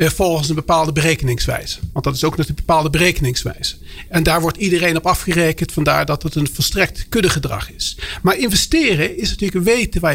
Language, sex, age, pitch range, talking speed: Dutch, male, 50-69, 155-220 Hz, 185 wpm